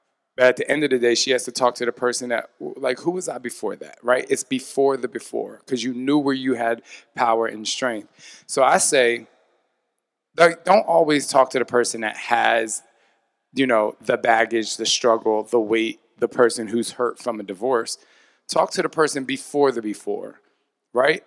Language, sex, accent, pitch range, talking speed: English, male, American, 115-140 Hz, 195 wpm